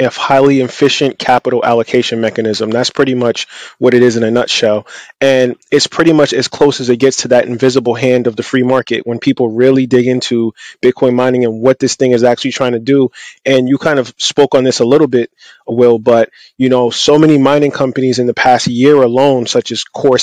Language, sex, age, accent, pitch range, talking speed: English, male, 20-39, American, 120-130 Hz, 220 wpm